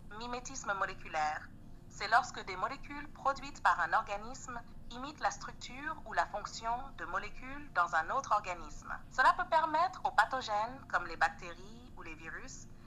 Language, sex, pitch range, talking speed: French, female, 200-270 Hz, 150 wpm